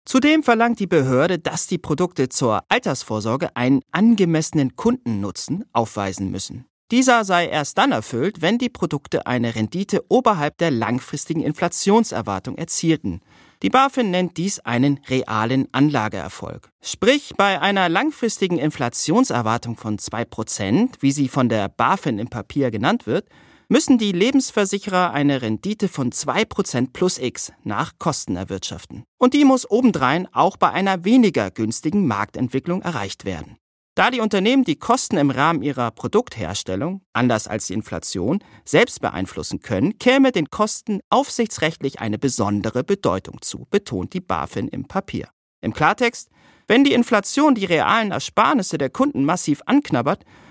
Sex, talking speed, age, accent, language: male, 140 wpm, 40-59, German, German